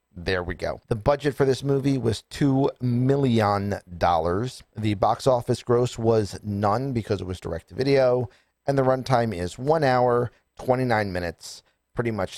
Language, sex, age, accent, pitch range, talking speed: English, male, 40-59, American, 95-130 Hz, 150 wpm